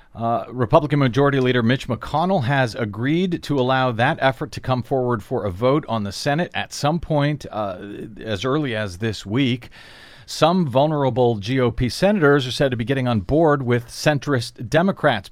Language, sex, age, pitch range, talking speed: English, male, 40-59, 115-145 Hz, 170 wpm